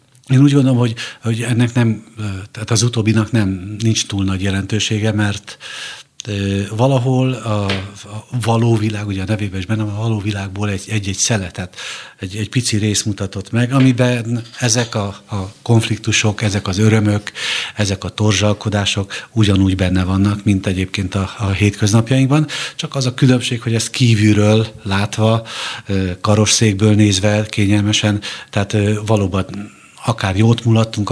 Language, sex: Hungarian, male